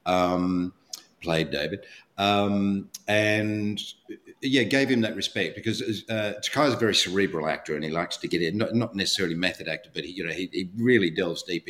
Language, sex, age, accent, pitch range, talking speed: English, male, 50-69, Australian, 90-115 Hz, 185 wpm